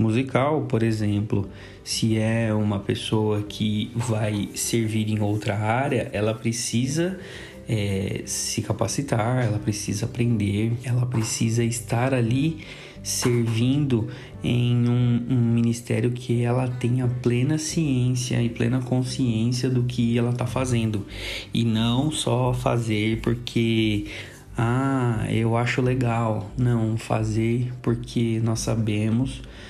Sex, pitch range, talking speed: male, 110-125 Hz, 115 wpm